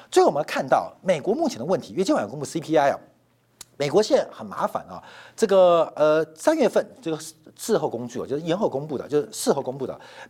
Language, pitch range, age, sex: Chinese, 155-225 Hz, 50-69, male